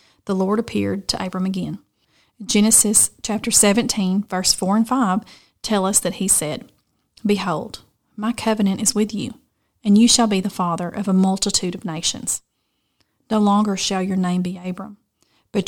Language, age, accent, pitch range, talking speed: English, 30-49, American, 190-225 Hz, 165 wpm